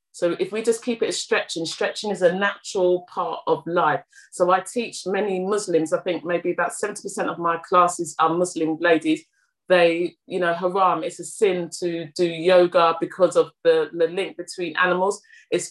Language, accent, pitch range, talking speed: English, British, 175-215 Hz, 185 wpm